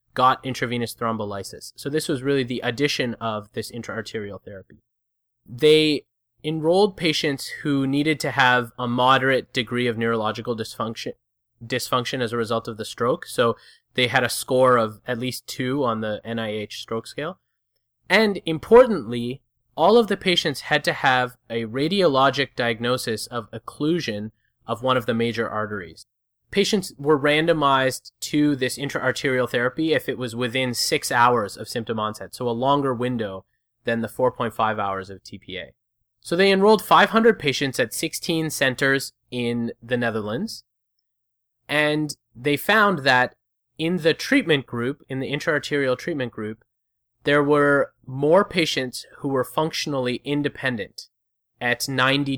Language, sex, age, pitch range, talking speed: English, male, 20-39, 115-145 Hz, 145 wpm